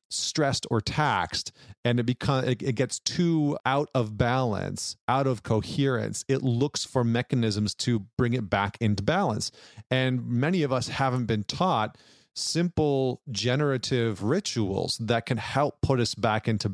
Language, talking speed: English, 150 wpm